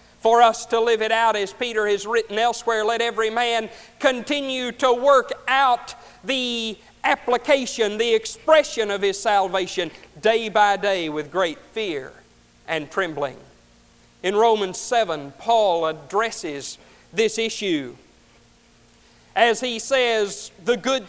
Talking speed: 130 wpm